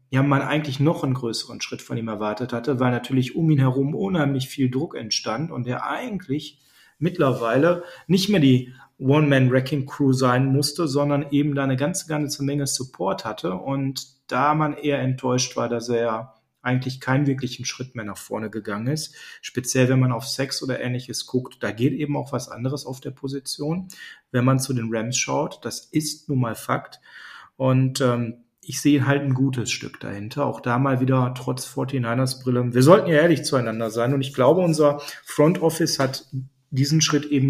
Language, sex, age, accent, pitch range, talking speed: German, male, 40-59, German, 130-150 Hz, 185 wpm